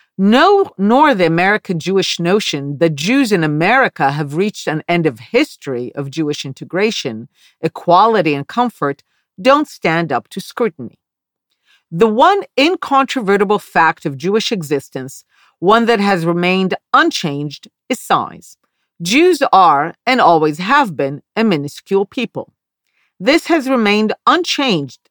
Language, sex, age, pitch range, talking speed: English, female, 50-69, 165-255 Hz, 130 wpm